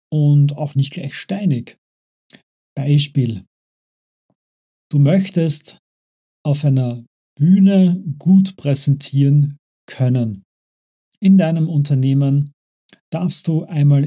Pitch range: 125-155 Hz